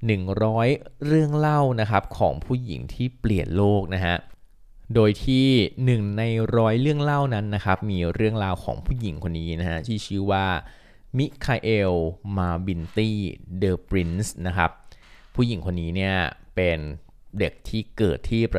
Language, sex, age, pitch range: Thai, male, 20-39, 85-110 Hz